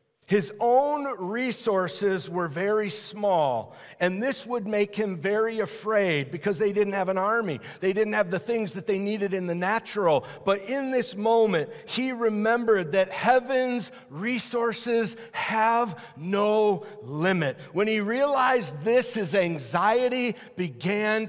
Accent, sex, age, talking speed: American, male, 50-69, 140 wpm